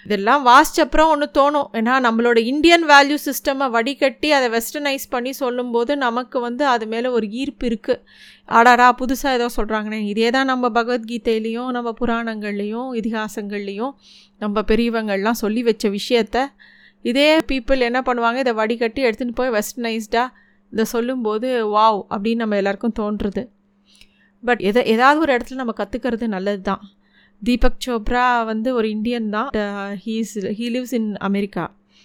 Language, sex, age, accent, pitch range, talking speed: Tamil, female, 30-49, native, 215-260 Hz, 135 wpm